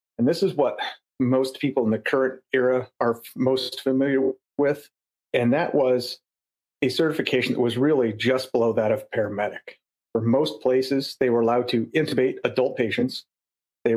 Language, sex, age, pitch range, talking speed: English, male, 40-59, 115-130 Hz, 165 wpm